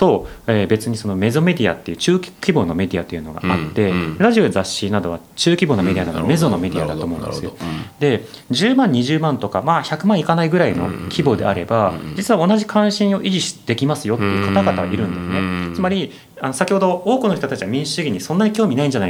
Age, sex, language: 30-49, male, Japanese